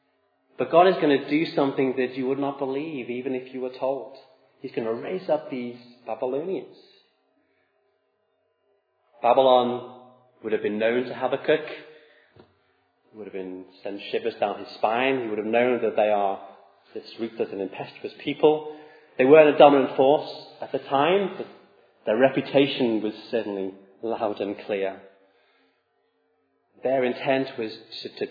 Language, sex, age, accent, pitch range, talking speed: English, male, 30-49, British, 105-145 Hz, 160 wpm